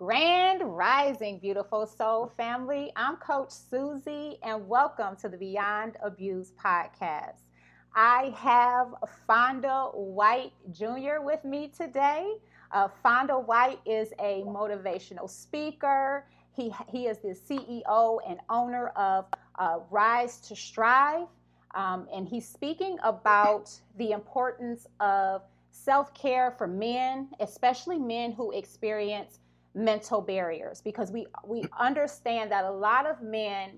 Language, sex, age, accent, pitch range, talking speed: English, female, 30-49, American, 200-265 Hz, 120 wpm